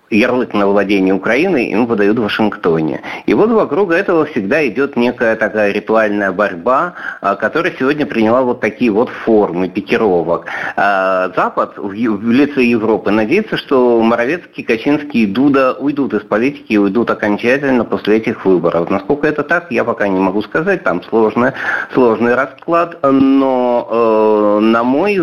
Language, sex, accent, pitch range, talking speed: Russian, male, native, 100-135 Hz, 145 wpm